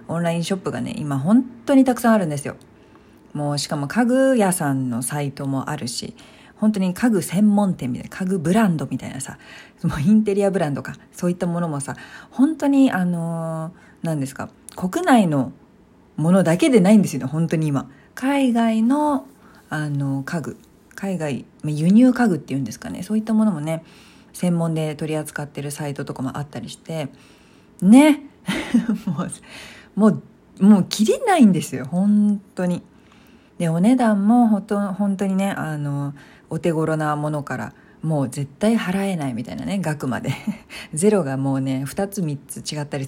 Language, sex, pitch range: Japanese, female, 145-220 Hz